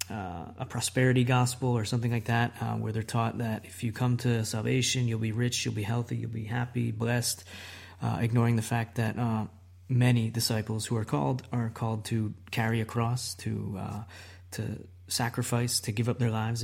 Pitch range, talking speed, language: 110-120 Hz, 190 wpm, English